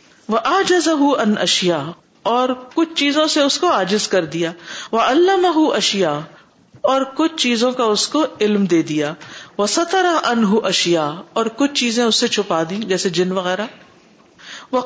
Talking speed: 160 wpm